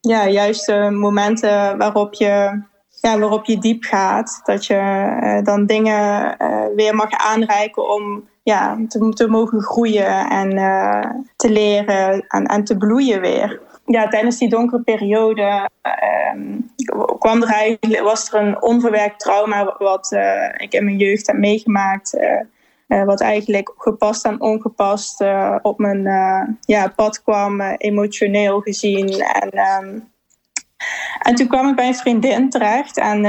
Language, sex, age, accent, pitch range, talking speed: Dutch, female, 10-29, Dutch, 205-235 Hz, 140 wpm